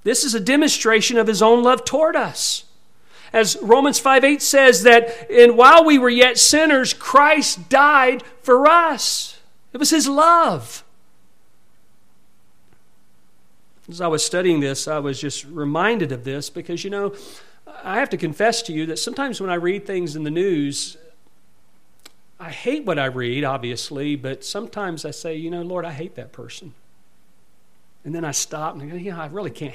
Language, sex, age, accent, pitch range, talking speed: English, male, 40-59, American, 155-250 Hz, 175 wpm